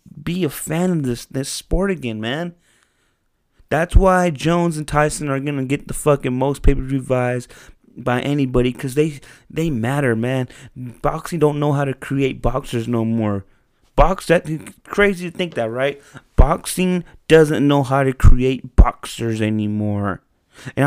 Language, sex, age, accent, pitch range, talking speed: English, male, 20-39, American, 115-155 Hz, 155 wpm